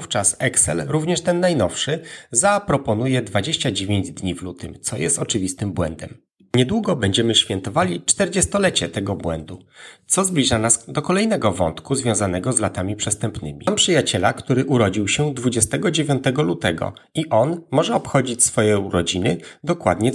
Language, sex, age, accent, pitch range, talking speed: Polish, male, 30-49, native, 105-160 Hz, 130 wpm